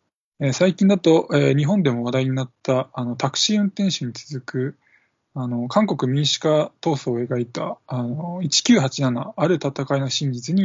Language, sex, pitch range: Japanese, male, 130-175 Hz